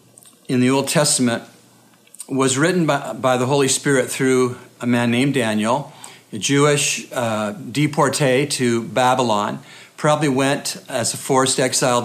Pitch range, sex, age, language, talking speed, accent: 115-135 Hz, male, 50-69, English, 140 wpm, American